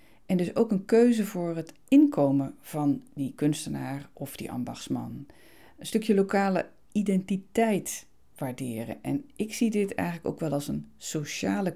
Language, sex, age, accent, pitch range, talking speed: Dutch, female, 40-59, Dutch, 145-205 Hz, 150 wpm